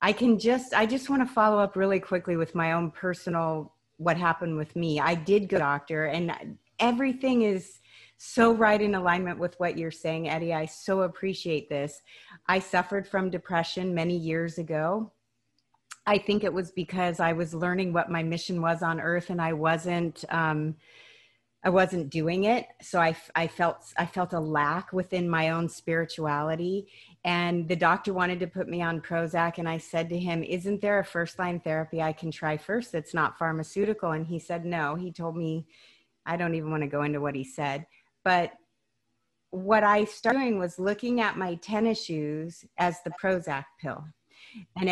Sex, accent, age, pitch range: female, American, 30-49, 165-195 Hz